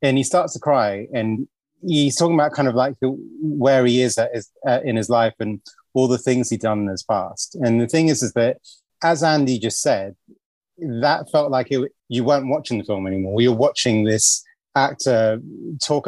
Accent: British